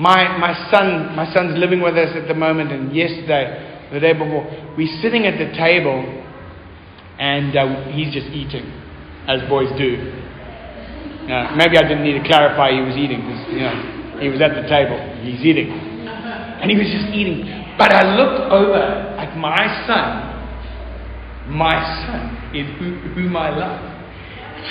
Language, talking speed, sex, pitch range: English, 170 wpm, male, 140-220 Hz